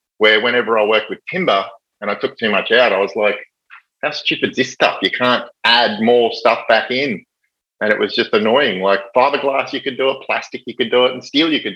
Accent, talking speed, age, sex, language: Australian, 240 wpm, 30-49, male, English